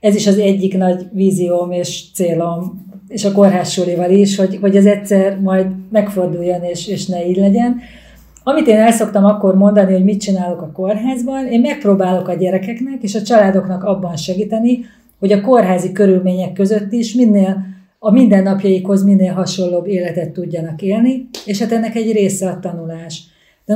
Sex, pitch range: female, 180-205 Hz